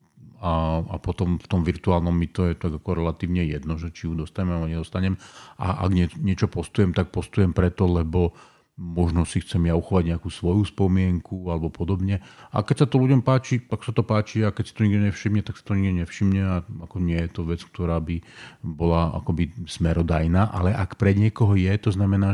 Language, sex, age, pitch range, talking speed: Slovak, male, 40-59, 90-105 Hz, 205 wpm